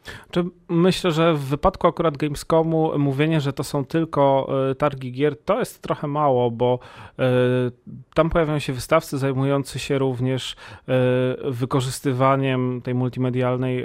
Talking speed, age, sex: 120 wpm, 30-49, male